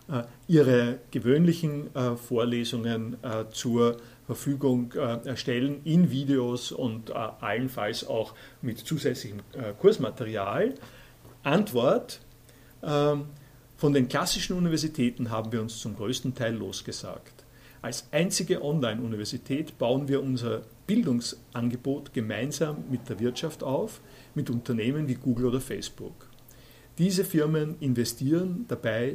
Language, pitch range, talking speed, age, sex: German, 120-145 Hz, 100 wpm, 50-69, male